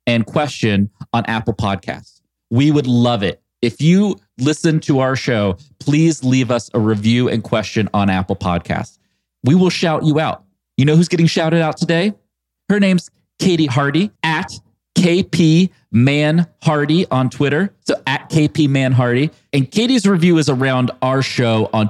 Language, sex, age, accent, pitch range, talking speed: English, male, 30-49, American, 105-150 Hz, 155 wpm